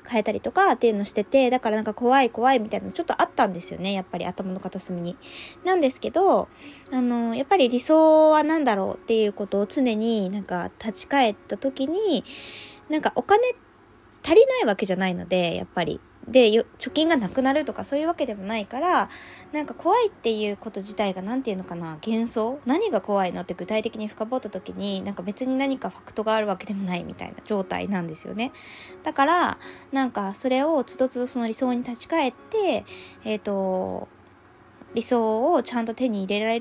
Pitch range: 200-275 Hz